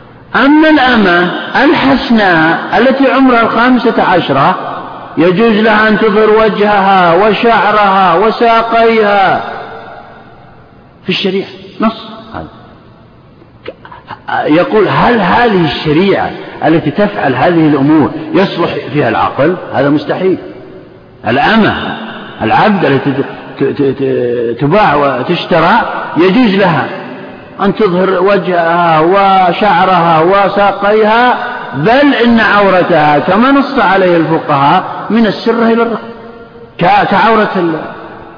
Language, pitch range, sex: Arabic, 150-230 Hz, male